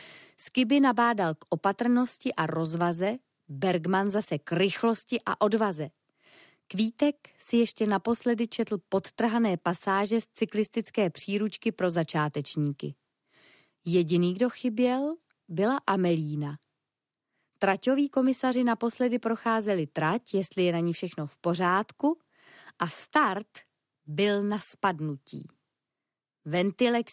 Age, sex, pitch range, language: 20-39, female, 175-240 Hz, Czech